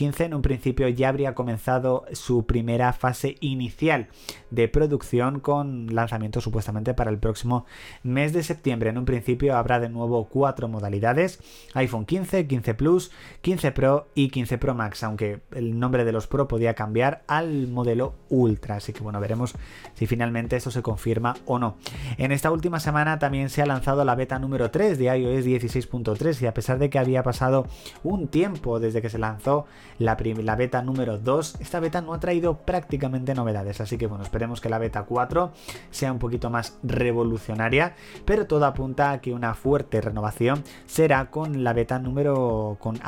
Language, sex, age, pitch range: Spanish, male, 30-49, 115-140 Hz